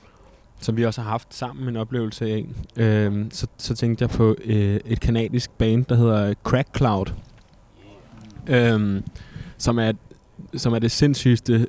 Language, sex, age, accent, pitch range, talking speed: Danish, male, 20-39, native, 105-120 Hz, 155 wpm